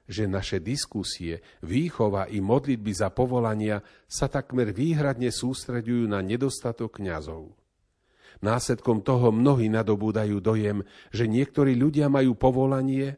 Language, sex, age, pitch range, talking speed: Slovak, male, 40-59, 100-130 Hz, 115 wpm